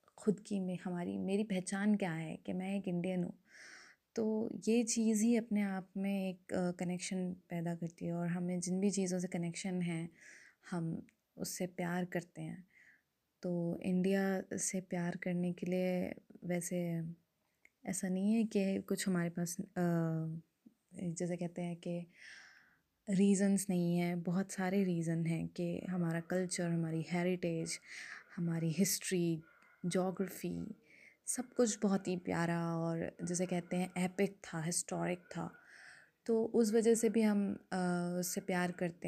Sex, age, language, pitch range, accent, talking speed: female, 20-39, Hindi, 175-195 Hz, native, 145 wpm